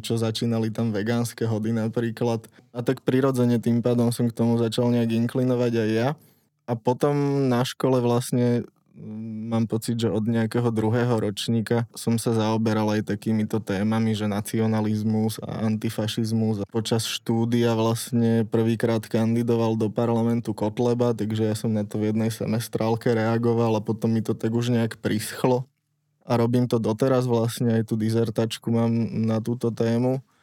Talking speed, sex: 155 wpm, male